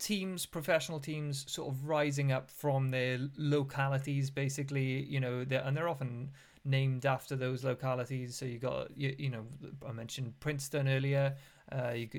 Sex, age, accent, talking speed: male, 30-49, British, 160 wpm